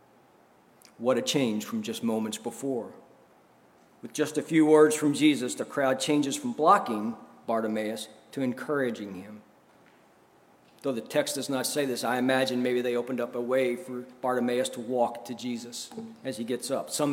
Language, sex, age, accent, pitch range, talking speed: English, male, 40-59, American, 120-150 Hz, 170 wpm